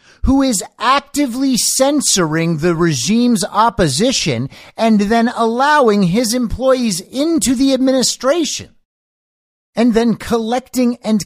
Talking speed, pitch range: 100 wpm, 135-220 Hz